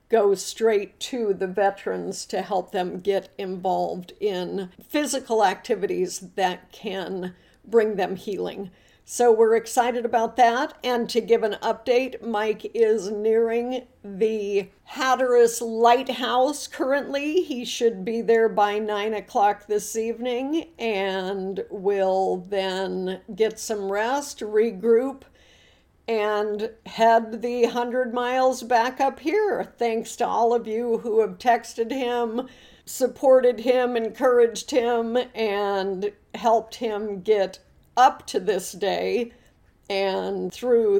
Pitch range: 205-245 Hz